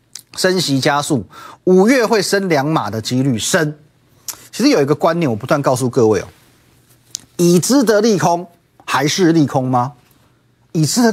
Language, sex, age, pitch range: Chinese, male, 30-49, 120-175 Hz